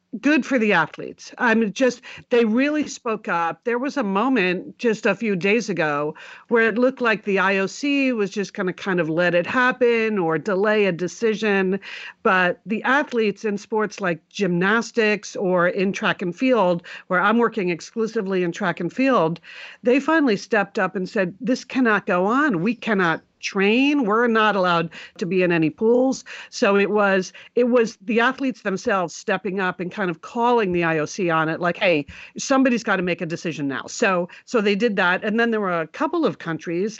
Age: 50-69